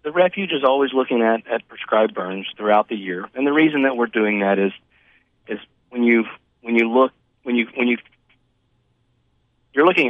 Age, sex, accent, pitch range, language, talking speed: 40-59, male, American, 95-120 Hz, English, 190 wpm